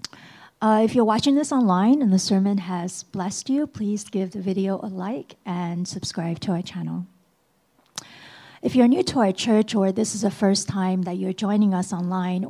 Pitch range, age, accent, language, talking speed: 185-215 Hz, 50-69, American, English, 190 wpm